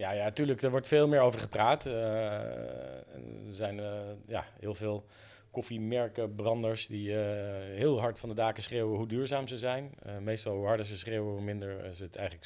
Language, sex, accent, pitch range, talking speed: Dutch, male, Dutch, 95-110 Hz, 195 wpm